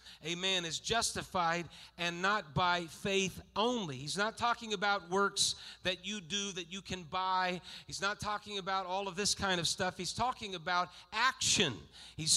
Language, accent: English, American